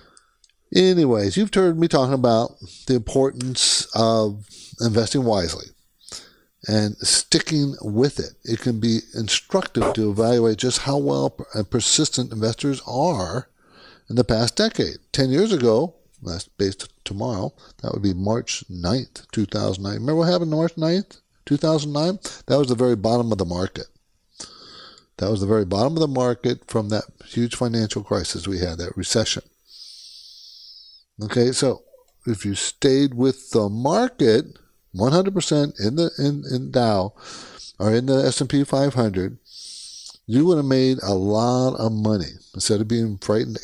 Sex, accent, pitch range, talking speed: male, American, 110-150 Hz, 145 wpm